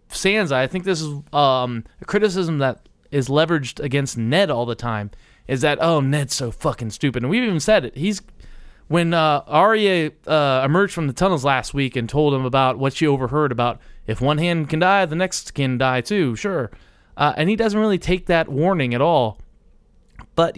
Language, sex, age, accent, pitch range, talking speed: English, male, 20-39, American, 130-180 Hz, 200 wpm